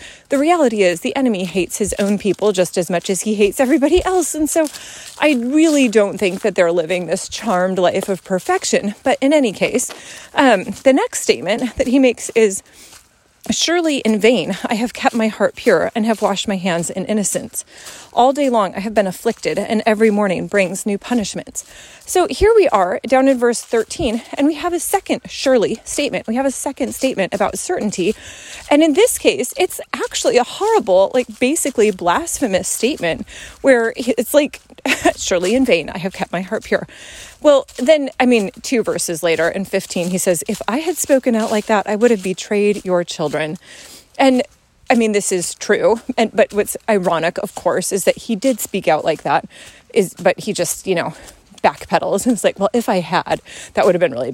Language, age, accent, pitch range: English, 30-49, American, 195-270 Hz